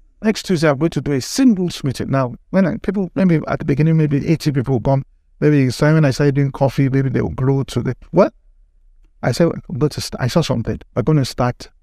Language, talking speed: English, 240 wpm